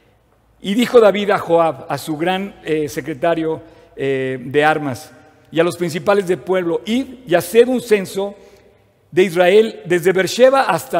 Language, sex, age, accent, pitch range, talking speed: Spanish, male, 50-69, Mexican, 170-240 Hz, 160 wpm